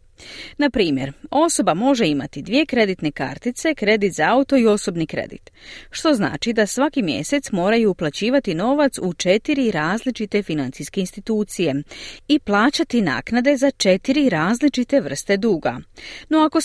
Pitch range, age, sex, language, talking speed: 180-270 Hz, 40-59, female, Croatian, 135 wpm